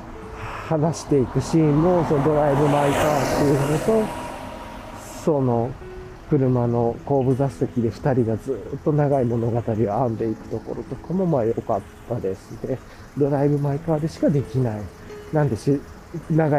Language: Japanese